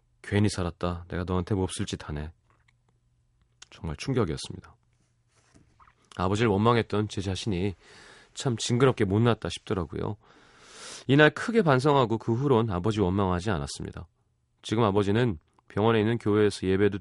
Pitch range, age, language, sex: 95-120 Hz, 30-49, Korean, male